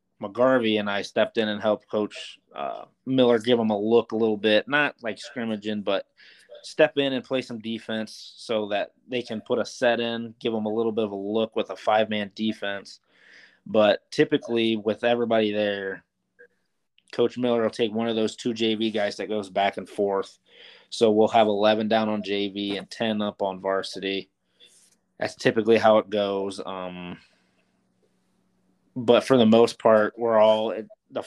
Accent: American